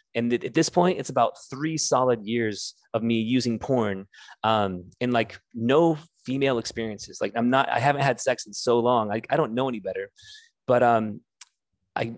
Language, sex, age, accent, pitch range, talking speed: English, male, 30-49, American, 115-145 Hz, 185 wpm